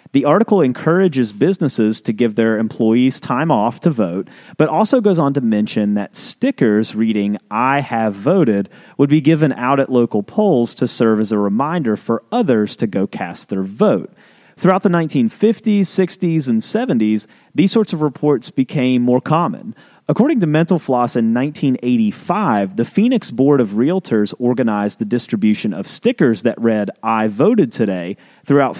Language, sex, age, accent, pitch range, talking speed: English, male, 30-49, American, 110-165 Hz, 165 wpm